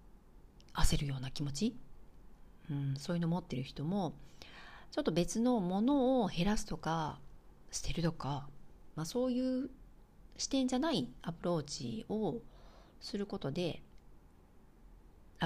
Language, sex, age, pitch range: Japanese, female, 40-59, 140-205 Hz